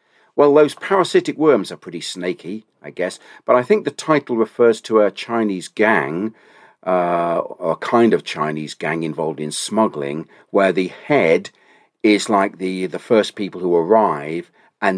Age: 40-59